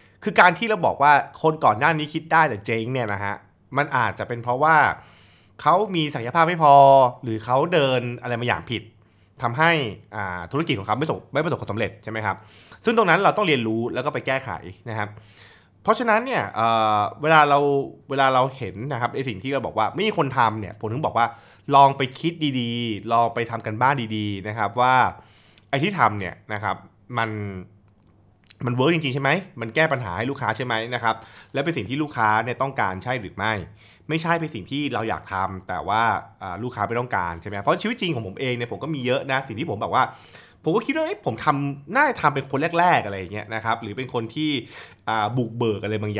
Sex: male